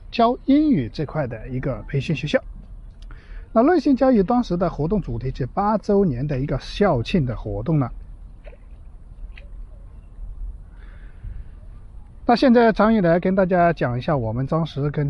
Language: Chinese